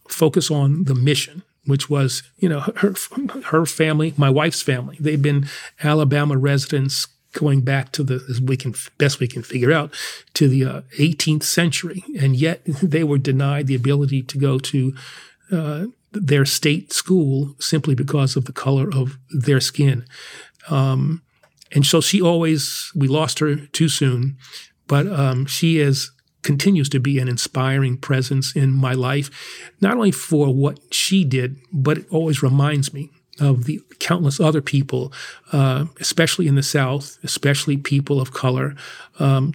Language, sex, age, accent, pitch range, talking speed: English, male, 40-59, American, 135-155 Hz, 160 wpm